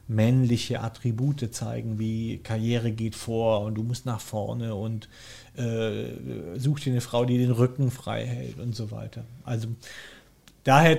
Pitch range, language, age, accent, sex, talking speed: 115-140 Hz, German, 40-59, German, male, 155 wpm